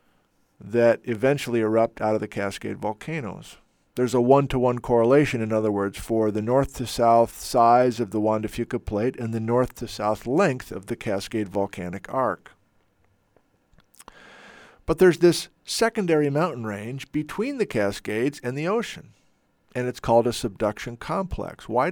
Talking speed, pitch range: 145 wpm, 110-145 Hz